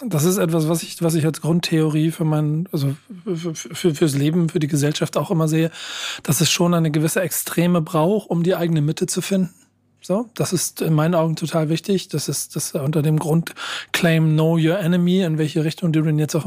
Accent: German